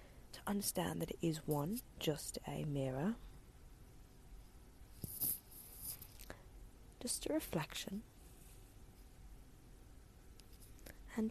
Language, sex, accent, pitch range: English, female, British, 185-250 Hz